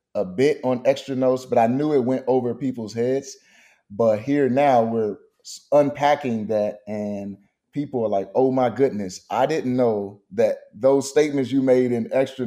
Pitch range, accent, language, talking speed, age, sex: 115-145 Hz, American, English, 175 wpm, 30-49, male